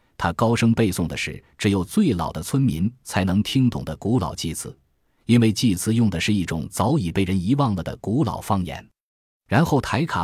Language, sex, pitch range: Chinese, male, 85-115 Hz